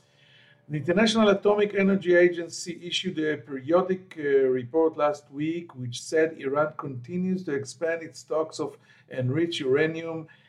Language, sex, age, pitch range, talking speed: English, male, 50-69, 125-160 Hz, 130 wpm